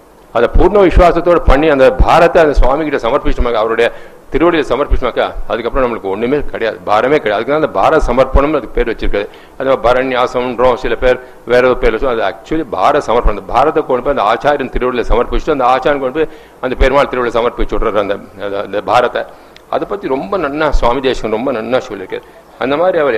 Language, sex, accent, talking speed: Tamil, male, native, 170 wpm